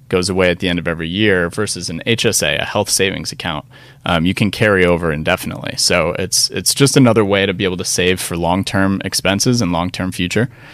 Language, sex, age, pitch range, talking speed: English, male, 30-49, 95-120 Hz, 210 wpm